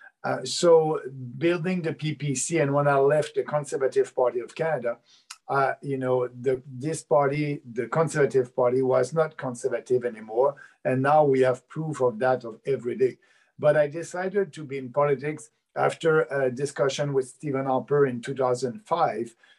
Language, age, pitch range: English, 50-69, 130-155 Hz